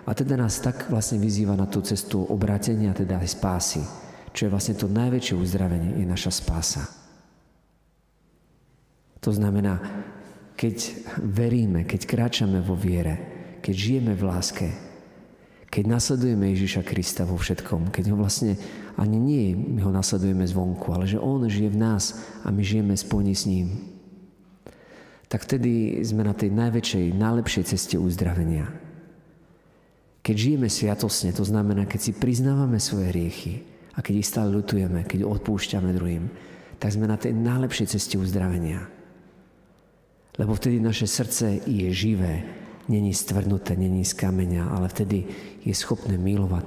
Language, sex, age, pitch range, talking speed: Slovak, male, 50-69, 95-115 Hz, 145 wpm